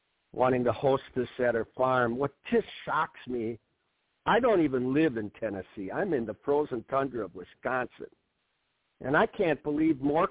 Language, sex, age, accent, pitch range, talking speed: English, male, 60-79, American, 125-185 Hz, 170 wpm